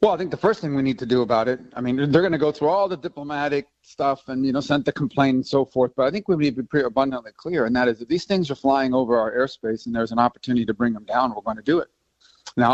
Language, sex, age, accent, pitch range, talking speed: English, male, 40-59, American, 115-140 Hz, 315 wpm